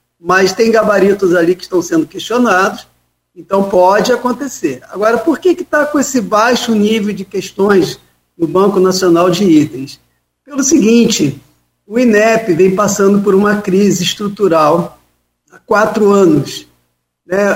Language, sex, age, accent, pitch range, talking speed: Portuguese, male, 40-59, Brazilian, 175-225 Hz, 140 wpm